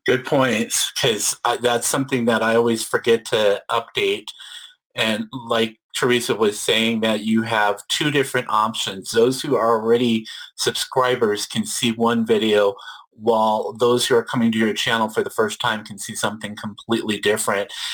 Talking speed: 160 wpm